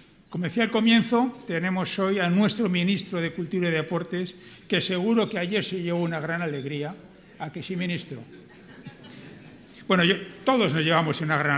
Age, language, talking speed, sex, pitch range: 60-79, Spanish, 165 wpm, male, 170-205 Hz